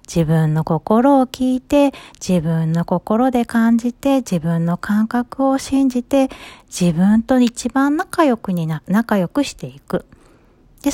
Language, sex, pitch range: Japanese, female, 170-265 Hz